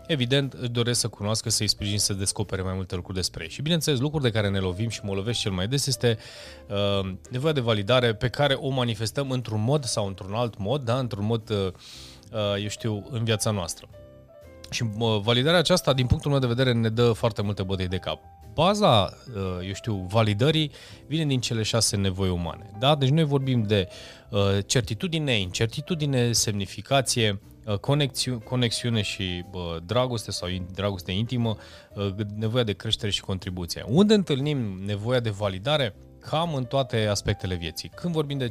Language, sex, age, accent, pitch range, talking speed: Romanian, male, 20-39, native, 100-130 Hz, 175 wpm